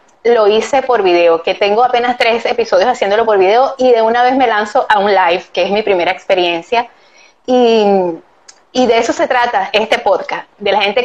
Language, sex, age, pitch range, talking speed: Spanish, female, 20-39, 200-260 Hz, 200 wpm